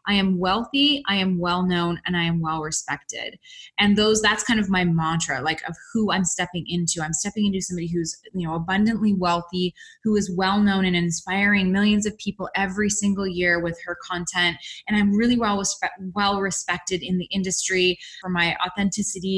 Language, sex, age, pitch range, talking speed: English, female, 20-39, 185-220 Hz, 190 wpm